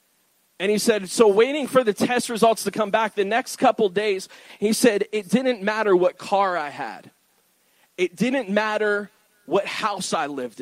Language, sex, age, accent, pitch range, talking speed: English, male, 30-49, American, 195-235 Hz, 180 wpm